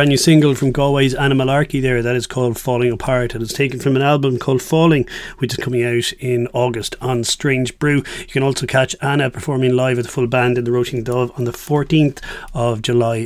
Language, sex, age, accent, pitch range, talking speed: English, male, 30-49, Irish, 120-145 Hz, 220 wpm